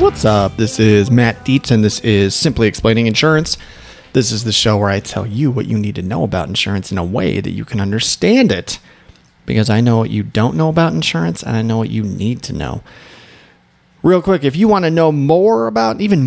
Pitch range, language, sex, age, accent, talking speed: 105-125 Hz, English, male, 30-49, American, 230 wpm